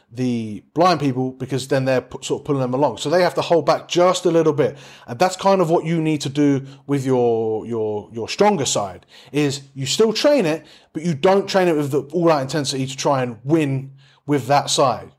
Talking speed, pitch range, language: 225 wpm, 135-160 Hz, English